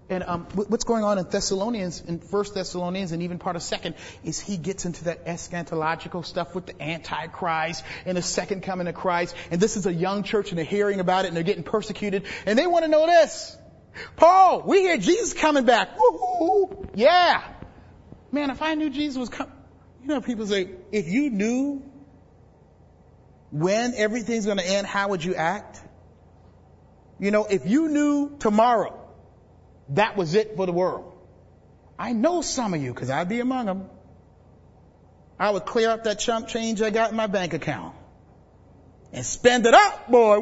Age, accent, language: 30-49, American, English